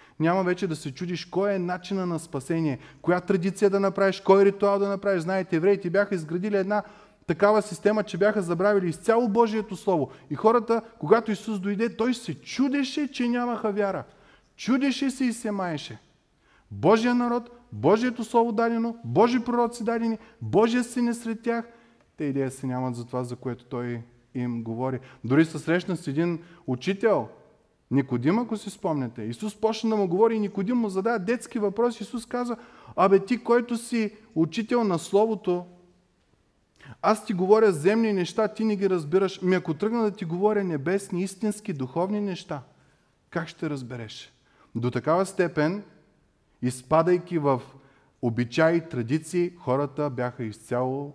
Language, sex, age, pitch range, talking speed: Bulgarian, male, 30-49, 140-220 Hz, 155 wpm